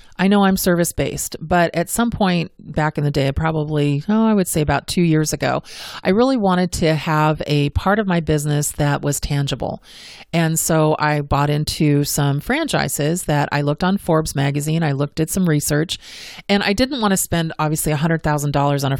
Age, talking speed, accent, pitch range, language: 30-49, 195 wpm, American, 150-185 Hz, English